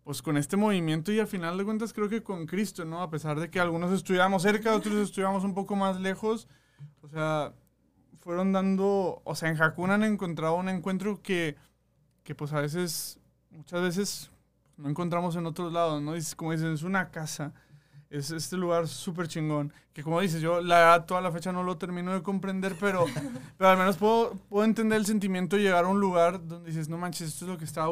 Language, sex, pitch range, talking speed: Spanish, male, 155-190 Hz, 215 wpm